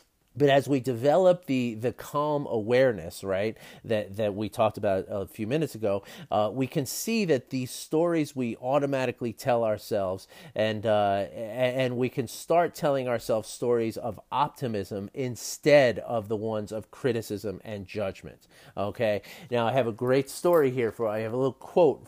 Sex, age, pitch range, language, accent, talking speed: male, 30-49, 110-145 Hz, English, American, 170 wpm